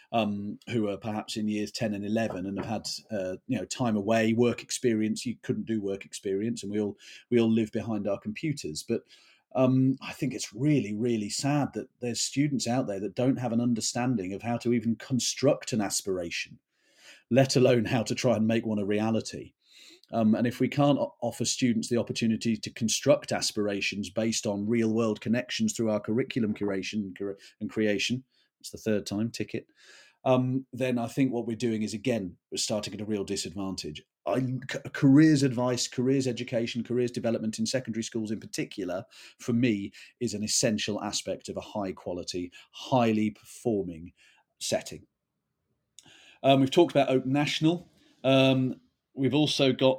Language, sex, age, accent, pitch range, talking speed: English, male, 40-59, British, 105-130 Hz, 175 wpm